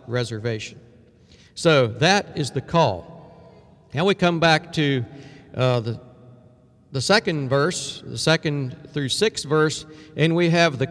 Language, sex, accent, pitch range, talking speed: English, male, American, 135-175 Hz, 140 wpm